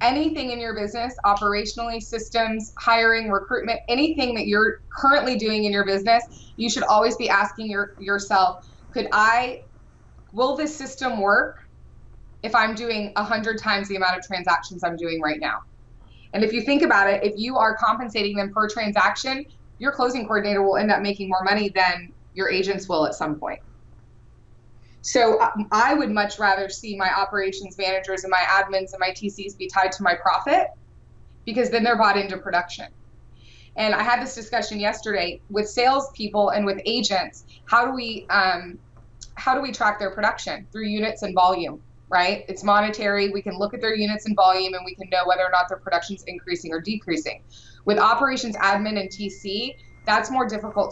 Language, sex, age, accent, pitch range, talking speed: English, female, 20-39, American, 185-225 Hz, 180 wpm